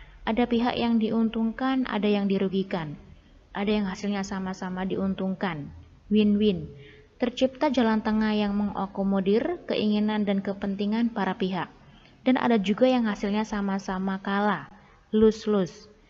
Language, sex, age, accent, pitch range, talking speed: Indonesian, female, 20-39, native, 195-225 Hz, 115 wpm